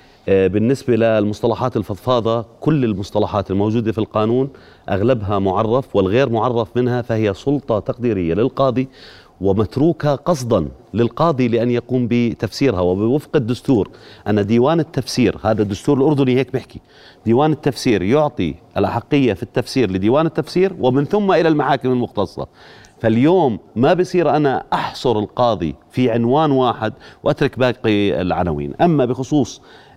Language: Arabic